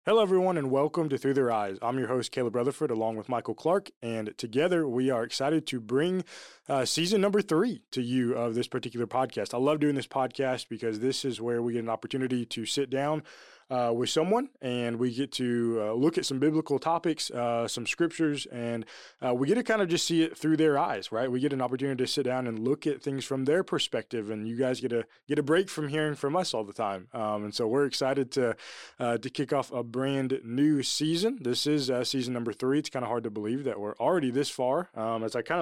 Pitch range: 115-140 Hz